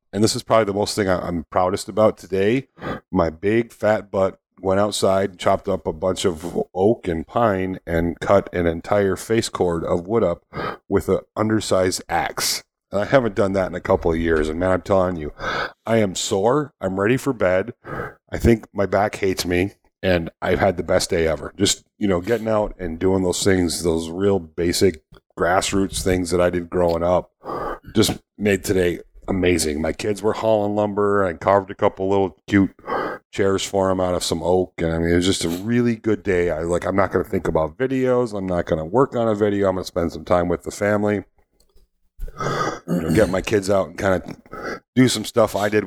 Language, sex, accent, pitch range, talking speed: English, male, American, 85-105 Hz, 210 wpm